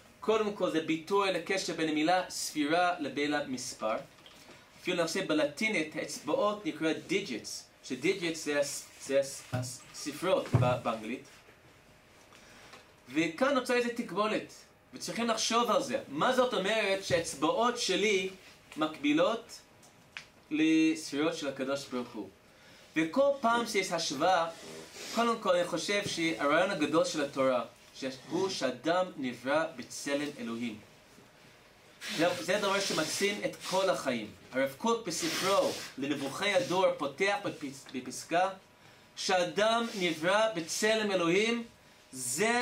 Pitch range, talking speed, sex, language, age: 150-210 Hz, 105 wpm, male, Hebrew, 20-39